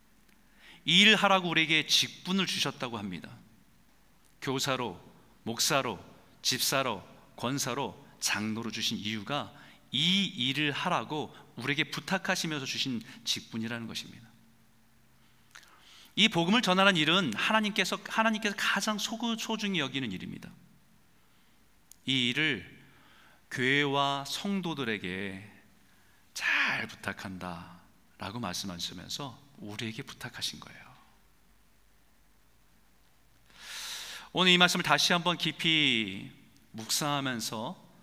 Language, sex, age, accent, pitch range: Korean, male, 40-59, native, 115-170 Hz